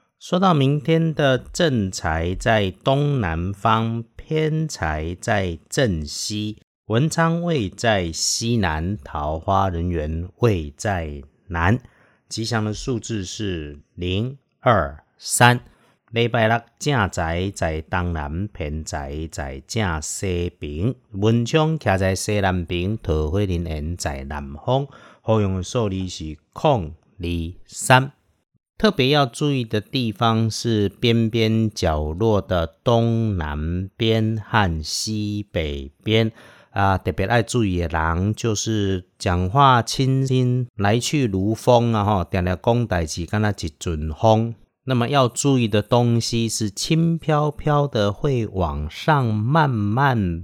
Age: 50-69